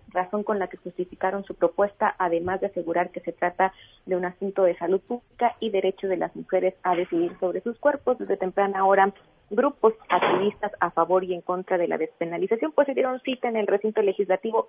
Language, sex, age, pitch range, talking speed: Spanish, female, 30-49, 185-215 Hz, 205 wpm